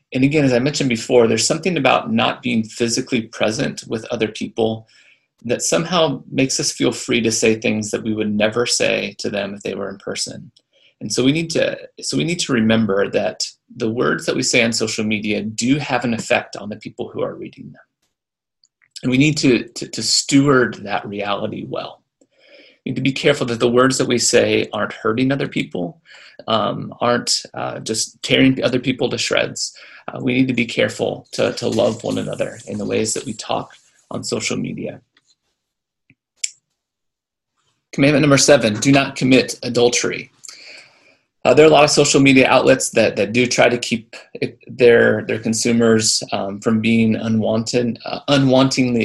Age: 30-49